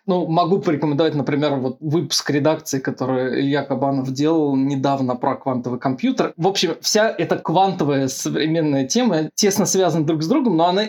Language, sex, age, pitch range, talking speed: Russian, male, 20-39, 145-175 Hz, 155 wpm